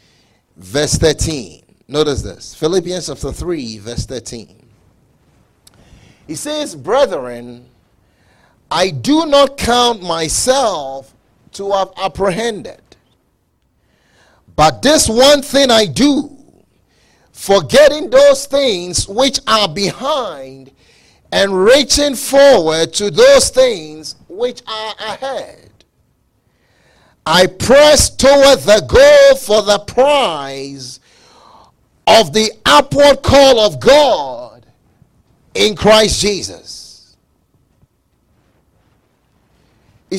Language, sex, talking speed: English, male, 90 wpm